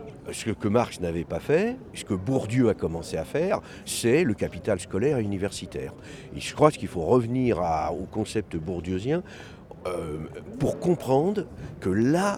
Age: 50-69